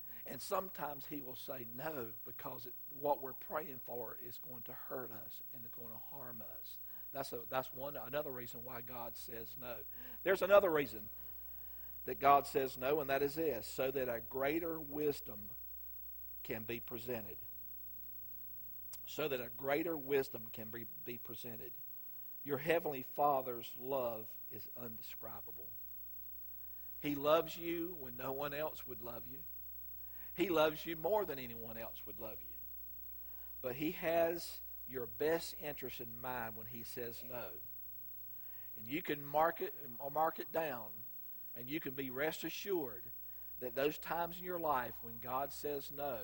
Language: English